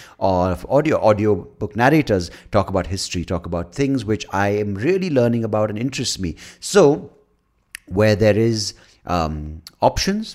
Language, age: English, 30-49